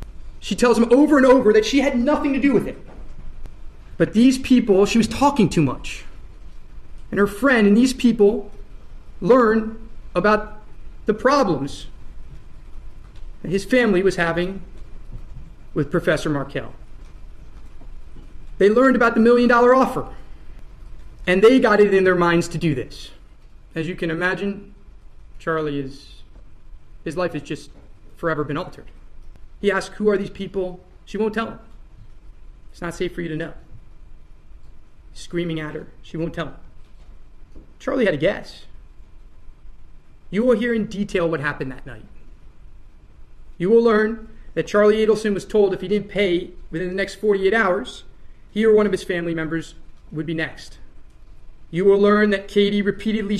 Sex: male